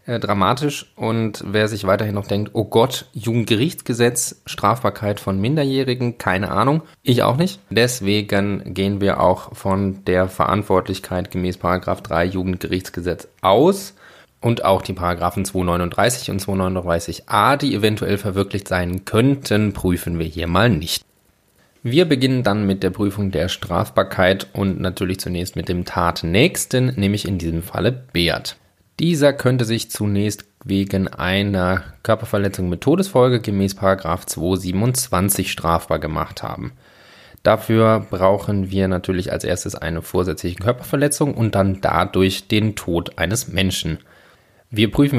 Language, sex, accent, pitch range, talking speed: German, male, German, 95-115 Hz, 130 wpm